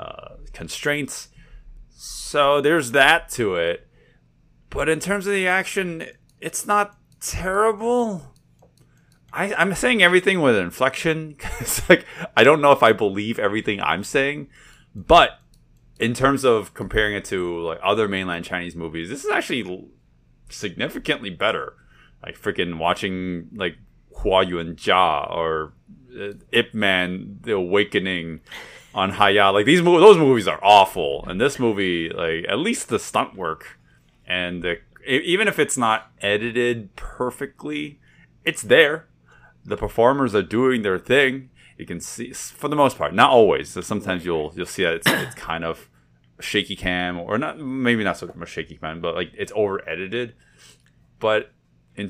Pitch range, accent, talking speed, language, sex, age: 85-140 Hz, American, 150 wpm, English, male, 30-49